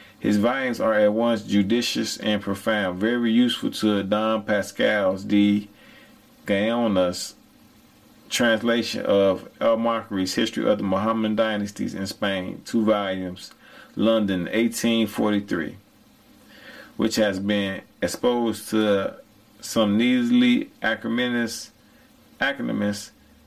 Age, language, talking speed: 30-49, English, 95 wpm